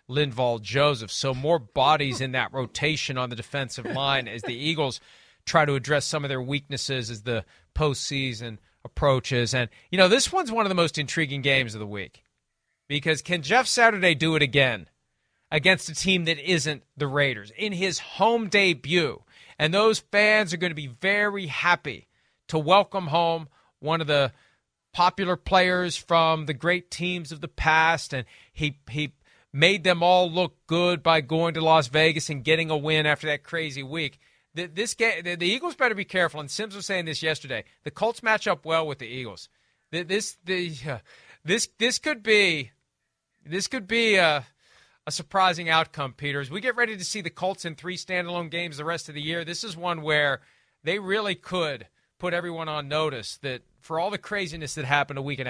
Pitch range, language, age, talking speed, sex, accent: 140-180 Hz, English, 40-59, 185 wpm, male, American